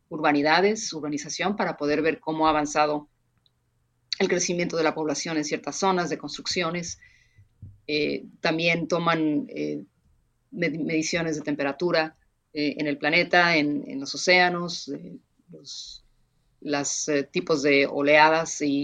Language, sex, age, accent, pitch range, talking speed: Spanish, female, 30-49, Mexican, 145-180 Hz, 125 wpm